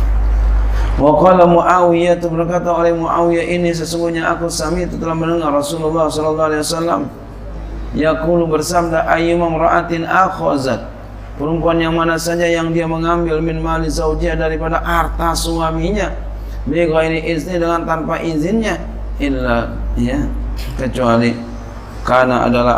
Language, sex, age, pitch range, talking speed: Indonesian, male, 40-59, 110-165 Hz, 120 wpm